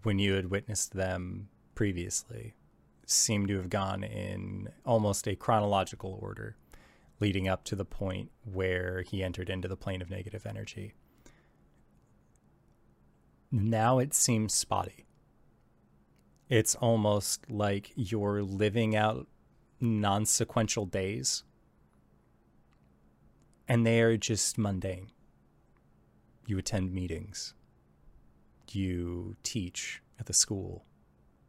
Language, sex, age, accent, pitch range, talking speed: English, male, 20-39, American, 90-110 Hz, 105 wpm